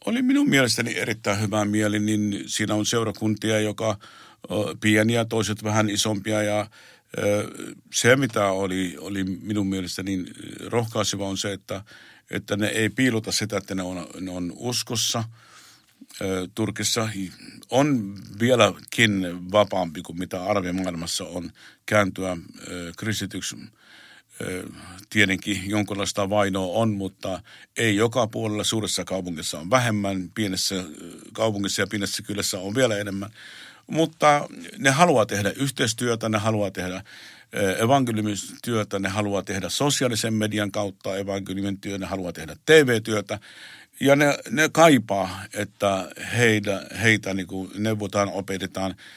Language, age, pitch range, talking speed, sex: Finnish, 50-69, 95-110 Hz, 120 wpm, male